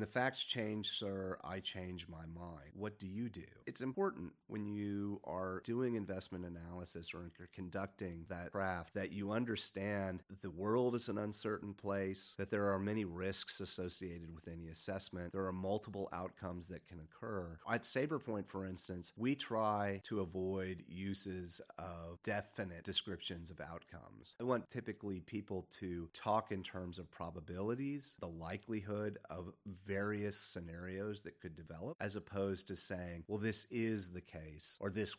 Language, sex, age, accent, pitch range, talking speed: English, male, 30-49, American, 90-105 Hz, 160 wpm